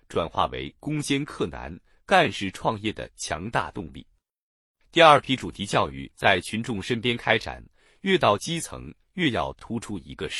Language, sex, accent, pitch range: Chinese, male, native, 90-150 Hz